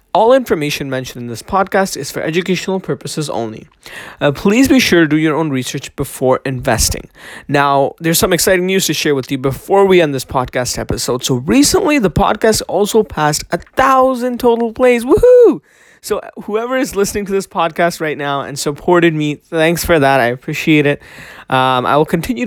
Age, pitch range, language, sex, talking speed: 20-39, 140-190 Hz, English, male, 185 wpm